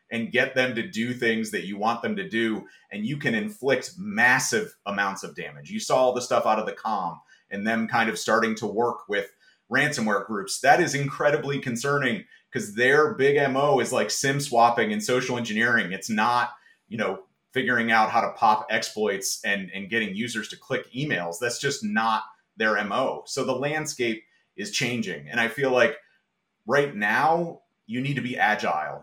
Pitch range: 110-145 Hz